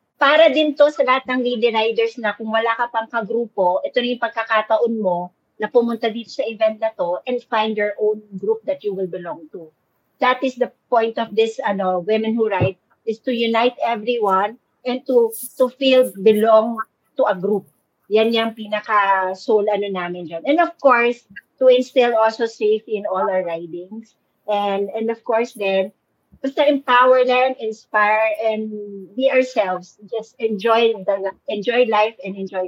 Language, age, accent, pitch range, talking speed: English, 50-69, Filipino, 210-255 Hz, 175 wpm